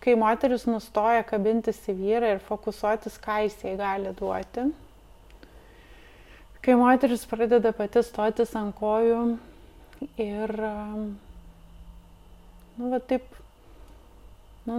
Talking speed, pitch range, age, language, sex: 95 wpm, 200-230 Hz, 20-39, English, female